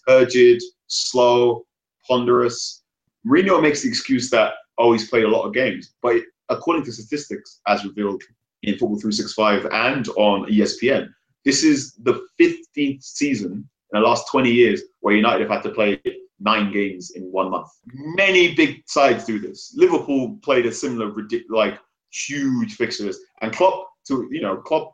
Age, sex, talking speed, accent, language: 30-49, male, 165 wpm, British, English